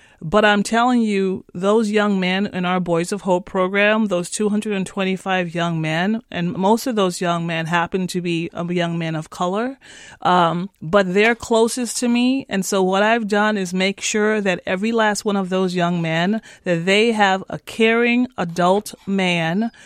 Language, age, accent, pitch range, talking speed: English, 30-49, American, 185-225 Hz, 180 wpm